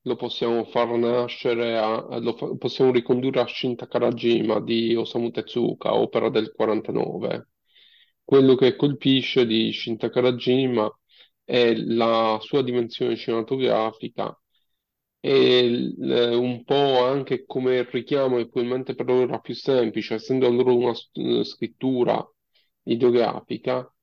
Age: 40-59